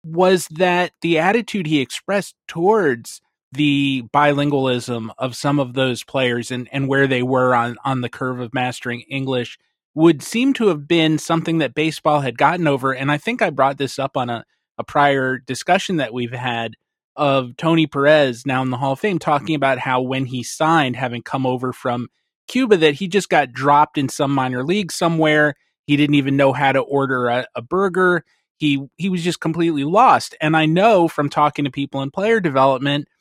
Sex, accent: male, American